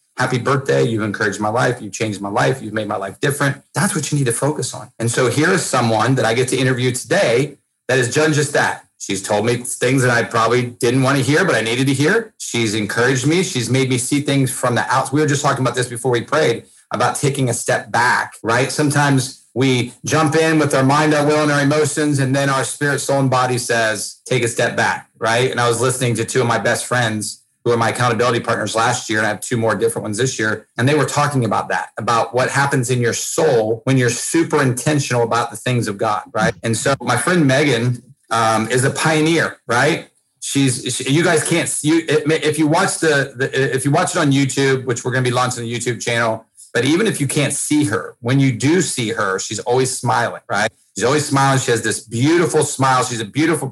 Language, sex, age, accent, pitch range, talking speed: English, male, 30-49, American, 115-145 Hz, 240 wpm